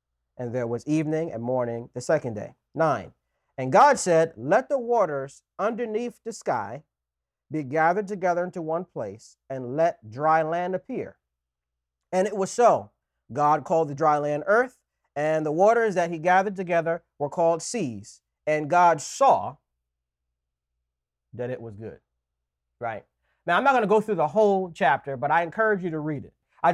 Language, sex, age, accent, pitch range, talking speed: English, male, 40-59, American, 130-180 Hz, 170 wpm